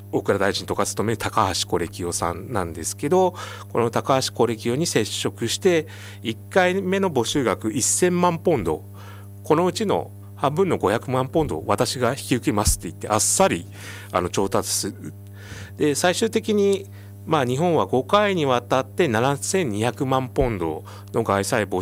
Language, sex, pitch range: Japanese, male, 100-140 Hz